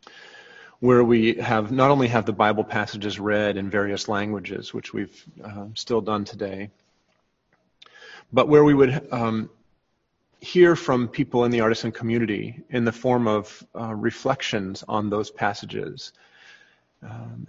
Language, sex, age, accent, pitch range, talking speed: English, male, 30-49, American, 110-135 Hz, 140 wpm